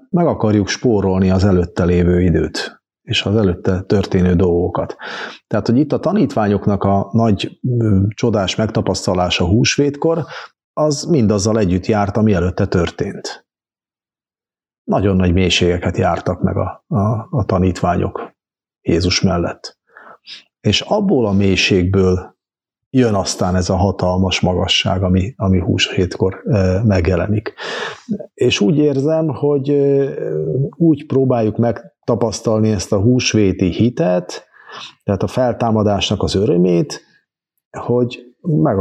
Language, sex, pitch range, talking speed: Hungarian, male, 95-120 Hz, 120 wpm